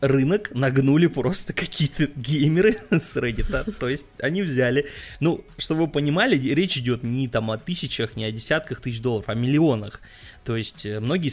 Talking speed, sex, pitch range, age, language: 170 wpm, male, 110-140 Hz, 20-39, Russian